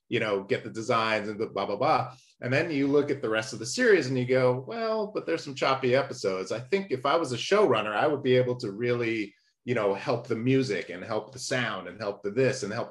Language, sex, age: English, male, 30-49